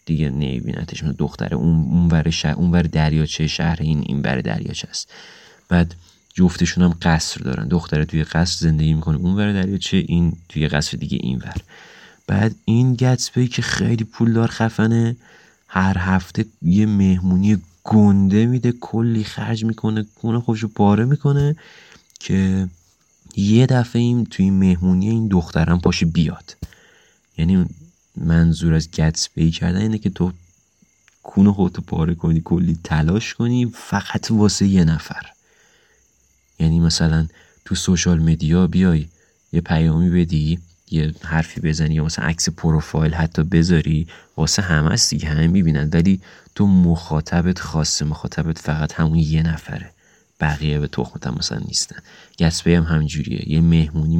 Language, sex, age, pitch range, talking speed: Persian, male, 30-49, 80-100 Hz, 145 wpm